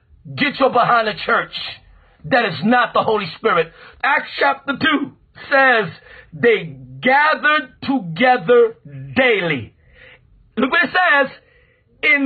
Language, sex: English, male